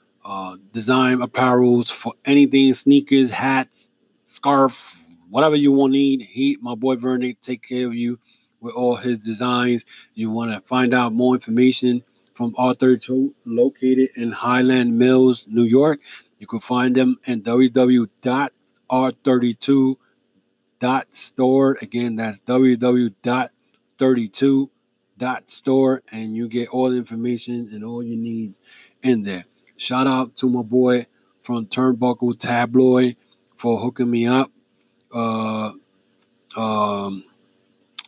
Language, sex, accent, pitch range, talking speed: English, male, American, 120-130 Hz, 115 wpm